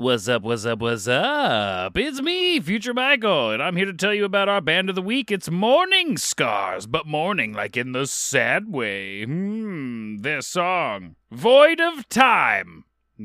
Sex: male